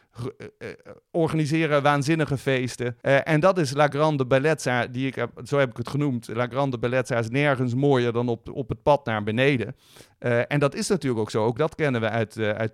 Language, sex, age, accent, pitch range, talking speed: Dutch, male, 50-69, Dutch, 115-145 Hz, 195 wpm